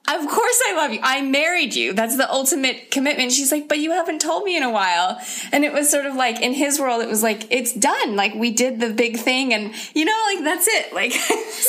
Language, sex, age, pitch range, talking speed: English, female, 20-39, 200-300 Hz, 255 wpm